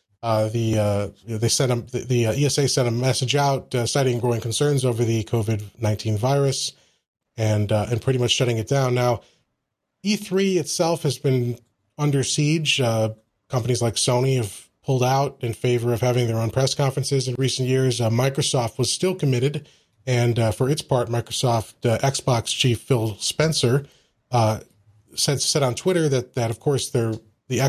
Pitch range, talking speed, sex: 115-135 Hz, 180 wpm, male